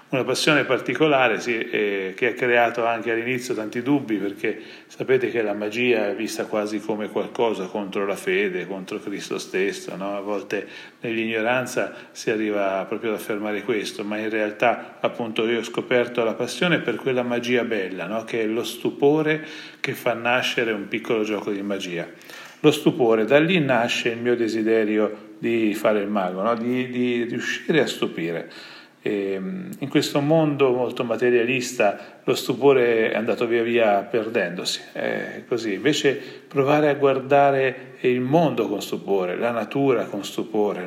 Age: 40-59